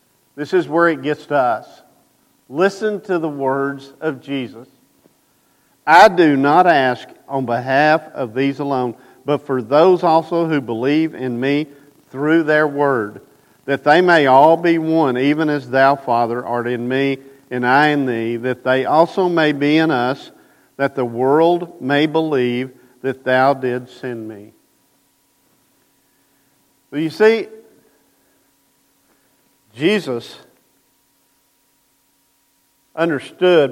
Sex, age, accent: male, 50-69, American